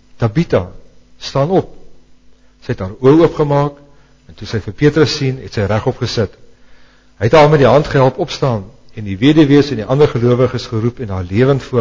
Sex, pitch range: male, 115-150 Hz